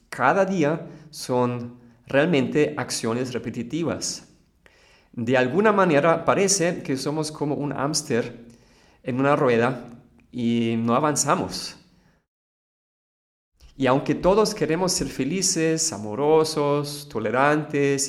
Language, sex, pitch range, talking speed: Spanish, male, 120-160 Hz, 95 wpm